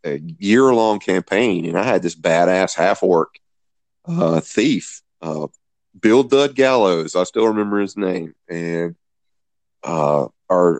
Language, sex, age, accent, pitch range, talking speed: English, male, 40-59, American, 90-110 Hz, 140 wpm